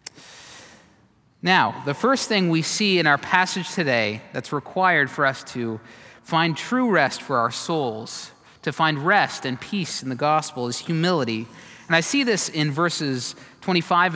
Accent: American